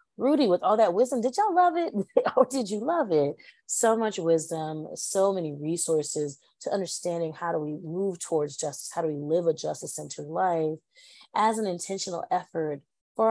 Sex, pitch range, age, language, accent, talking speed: female, 150-195 Hz, 30-49, English, American, 185 wpm